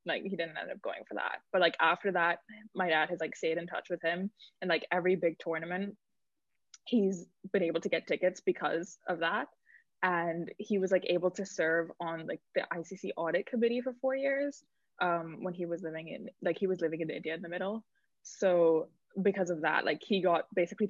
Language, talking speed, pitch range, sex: English, 215 wpm, 170-205 Hz, female